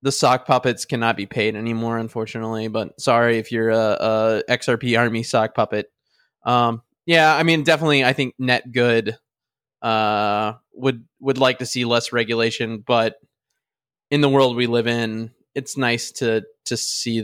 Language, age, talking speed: English, 20-39, 165 wpm